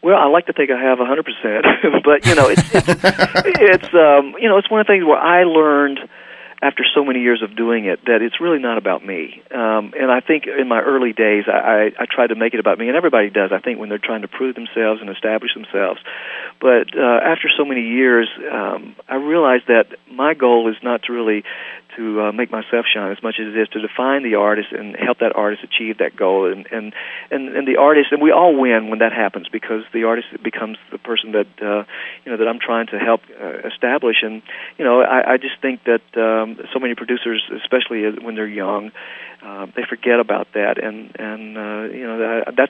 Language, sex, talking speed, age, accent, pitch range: English, male, 225 wpm, 40-59, American, 110-130 Hz